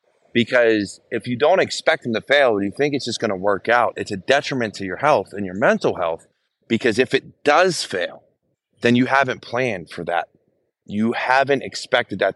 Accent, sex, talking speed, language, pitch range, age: American, male, 205 wpm, English, 100-135 Hz, 30-49